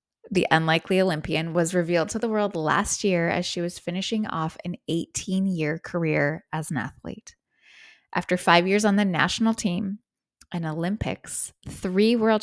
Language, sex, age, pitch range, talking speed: English, female, 20-39, 170-200 Hz, 160 wpm